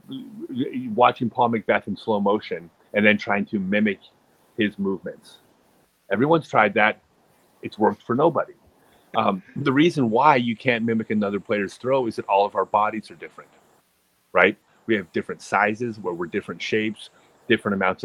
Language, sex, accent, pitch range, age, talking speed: English, male, American, 105-130 Hz, 30-49, 165 wpm